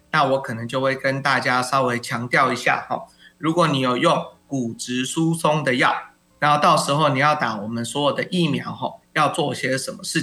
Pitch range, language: 130-170 Hz, Chinese